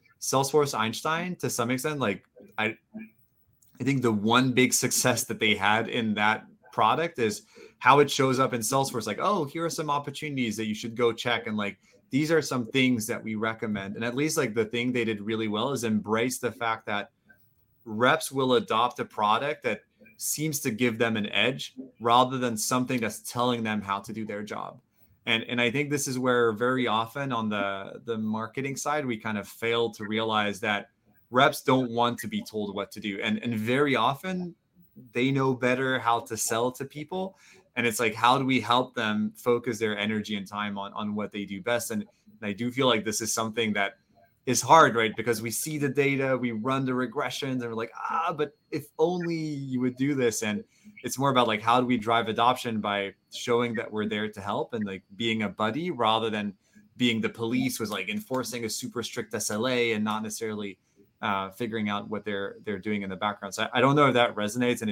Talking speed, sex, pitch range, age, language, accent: 215 wpm, male, 110-130 Hz, 30-49, English, American